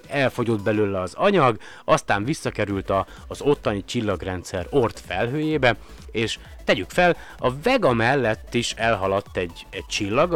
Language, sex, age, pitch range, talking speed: Hungarian, male, 30-49, 95-125 Hz, 125 wpm